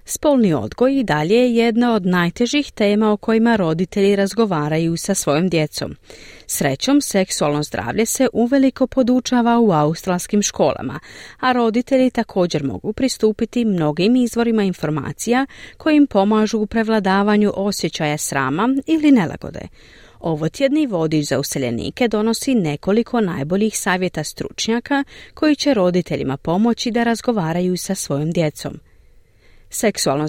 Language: English